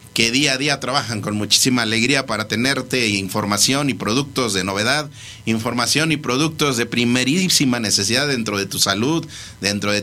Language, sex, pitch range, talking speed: Spanish, male, 110-140 Hz, 160 wpm